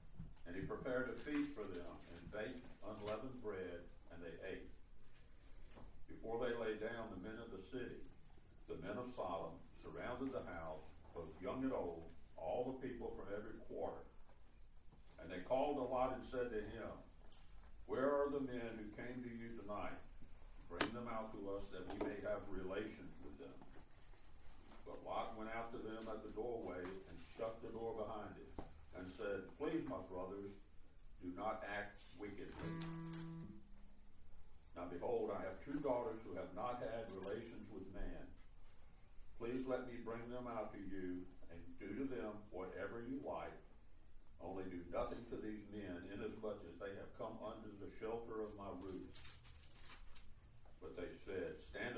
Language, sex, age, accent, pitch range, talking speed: English, male, 60-79, American, 85-115 Hz, 165 wpm